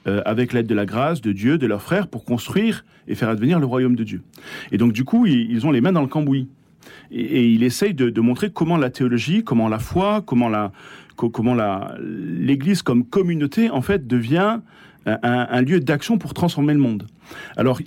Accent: French